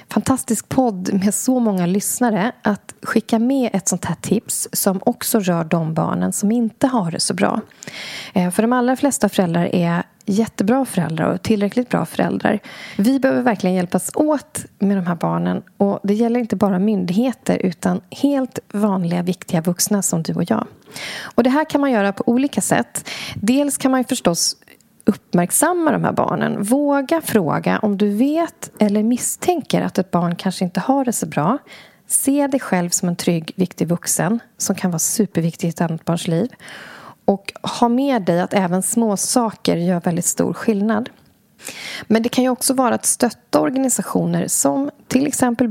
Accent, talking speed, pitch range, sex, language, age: native, 175 wpm, 185-240 Hz, female, Swedish, 30-49